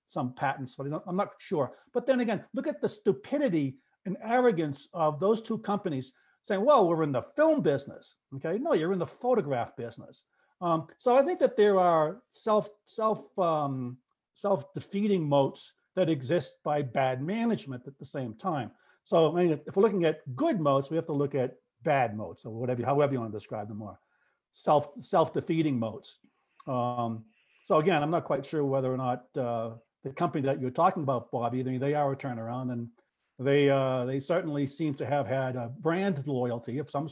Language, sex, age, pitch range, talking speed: English, male, 60-79, 130-180 Hz, 195 wpm